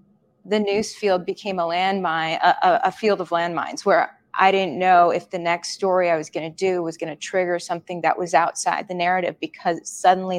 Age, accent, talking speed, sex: 20-39, American, 210 wpm, female